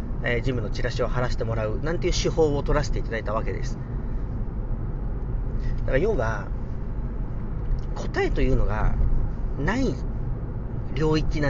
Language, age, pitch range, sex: Japanese, 40-59, 115-130 Hz, male